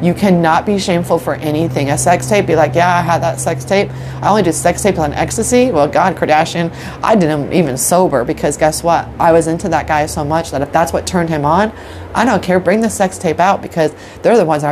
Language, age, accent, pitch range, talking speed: English, 30-49, American, 150-185 Hz, 250 wpm